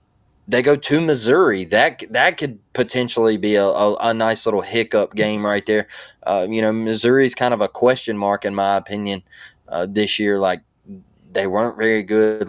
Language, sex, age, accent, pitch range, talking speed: English, male, 20-39, American, 100-120 Hz, 185 wpm